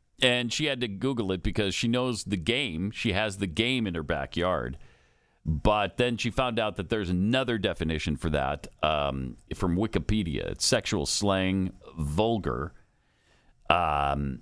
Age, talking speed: 40-59, 155 wpm